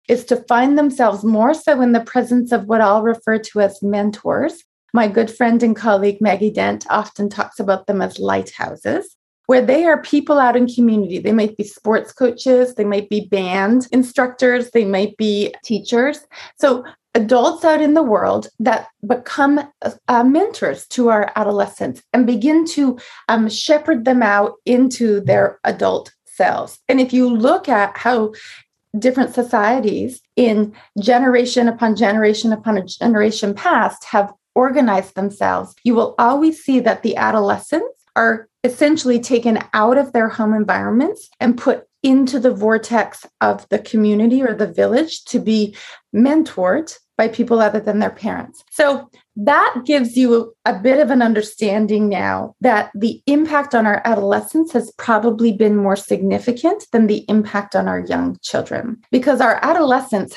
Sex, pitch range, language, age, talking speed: female, 215-260 Hz, English, 30-49, 160 wpm